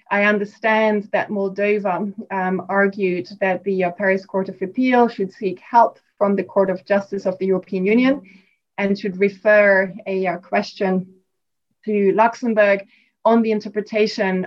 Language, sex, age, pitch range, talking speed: English, female, 20-39, 190-215 Hz, 150 wpm